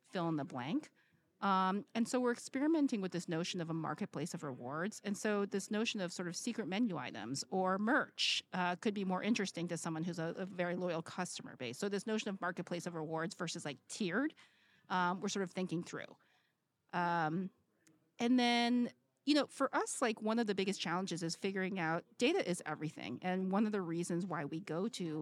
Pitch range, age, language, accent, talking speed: 165-210 Hz, 40-59, English, American, 205 wpm